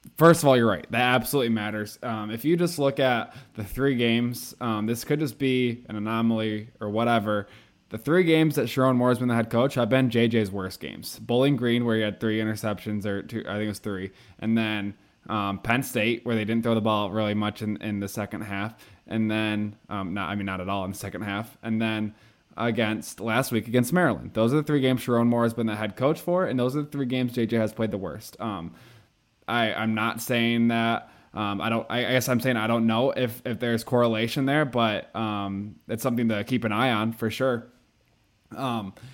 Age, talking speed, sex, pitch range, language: 20-39, 230 wpm, male, 110-125 Hz, English